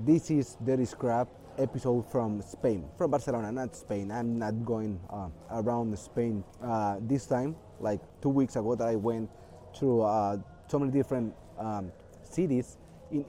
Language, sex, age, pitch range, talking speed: English, male, 30-49, 110-140 Hz, 160 wpm